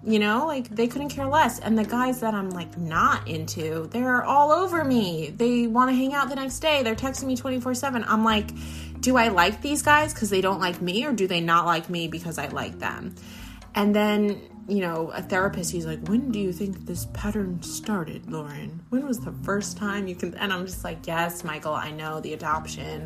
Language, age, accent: English, 20-39, American